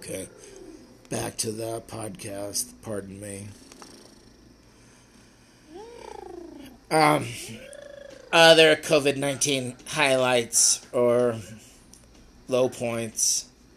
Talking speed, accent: 65 wpm, American